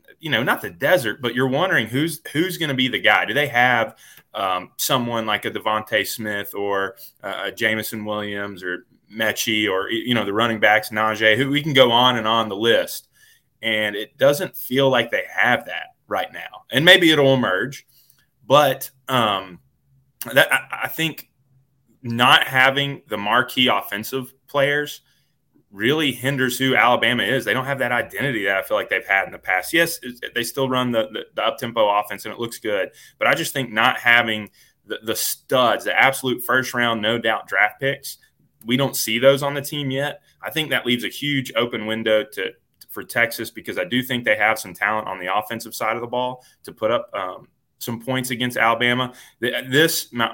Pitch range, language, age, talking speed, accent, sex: 110-135 Hz, English, 20-39, 195 wpm, American, male